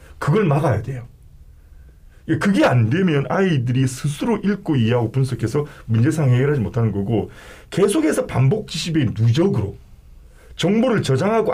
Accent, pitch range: native, 105-155 Hz